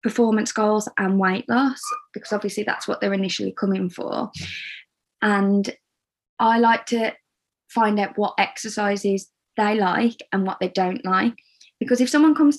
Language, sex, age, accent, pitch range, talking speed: English, female, 20-39, British, 195-235 Hz, 155 wpm